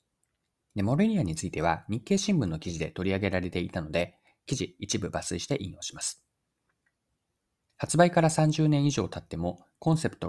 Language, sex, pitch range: Japanese, male, 85-130 Hz